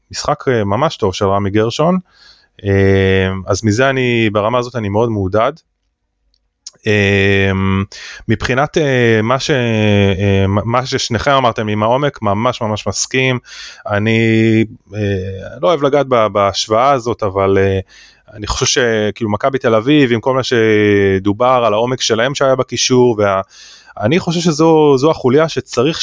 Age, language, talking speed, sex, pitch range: 20-39, Hebrew, 120 wpm, male, 100-130 Hz